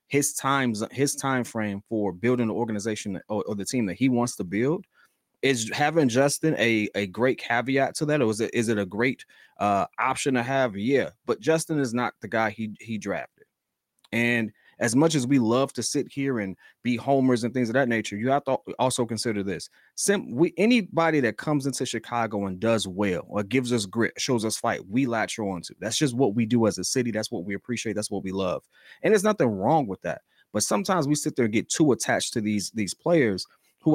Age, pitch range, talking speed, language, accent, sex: 30-49, 115-155 Hz, 225 wpm, English, American, male